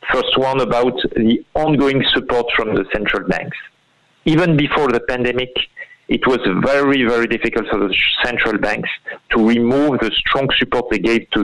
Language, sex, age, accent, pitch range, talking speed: English, male, 50-69, French, 115-155 Hz, 165 wpm